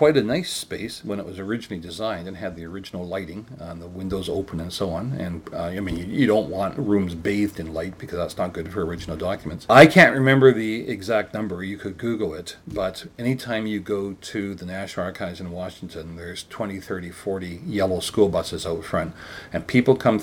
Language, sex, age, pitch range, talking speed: English, male, 40-59, 90-110 Hz, 215 wpm